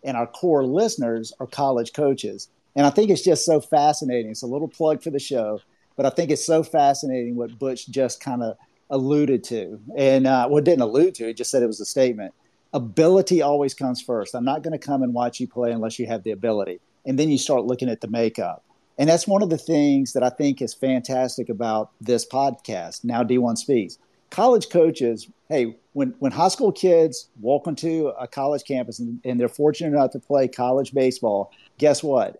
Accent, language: American, English